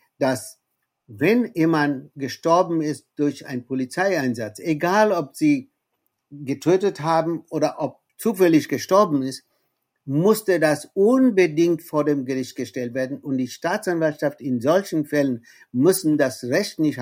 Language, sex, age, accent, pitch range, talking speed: German, male, 60-79, German, 125-155 Hz, 125 wpm